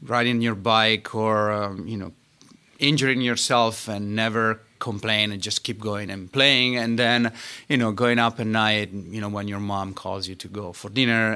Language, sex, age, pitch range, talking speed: English, male, 30-49, 100-120 Hz, 195 wpm